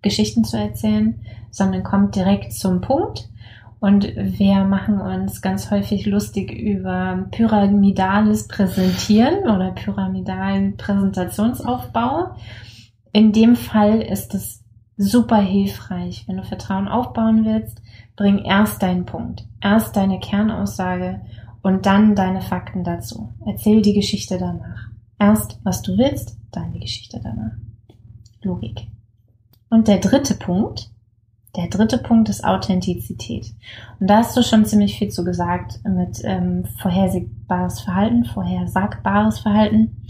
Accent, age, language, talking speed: German, 20-39, German, 120 wpm